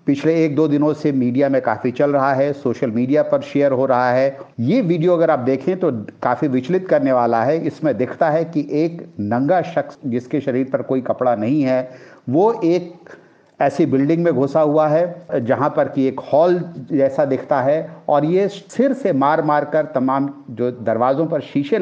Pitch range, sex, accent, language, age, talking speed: 130-155 Hz, male, native, Hindi, 50-69, 195 wpm